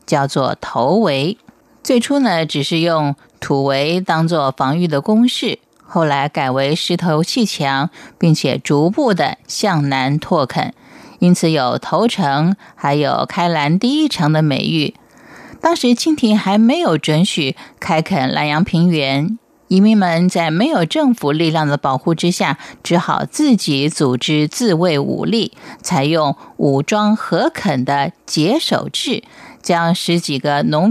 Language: Chinese